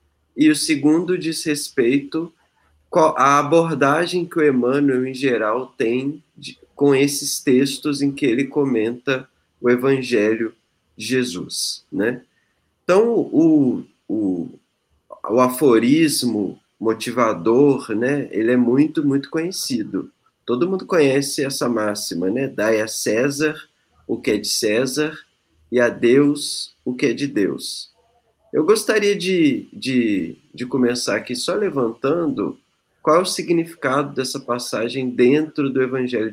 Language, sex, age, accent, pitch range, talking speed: Portuguese, male, 20-39, Brazilian, 110-145 Hz, 125 wpm